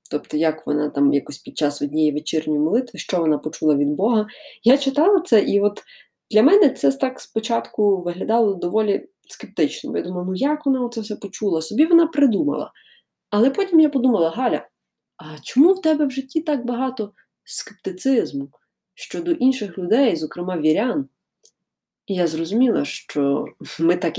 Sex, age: female, 20-39